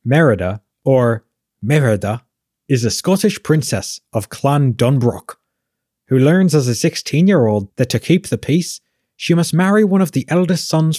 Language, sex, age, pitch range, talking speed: English, male, 30-49, 115-150 Hz, 165 wpm